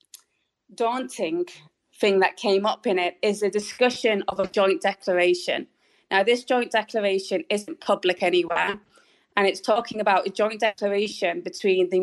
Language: English